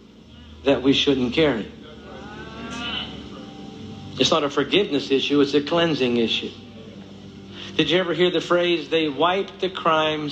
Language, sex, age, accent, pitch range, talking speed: English, male, 50-69, American, 110-145 Hz, 135 wpm